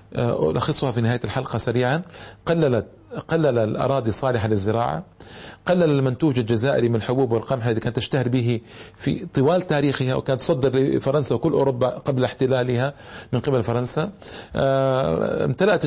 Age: 40-59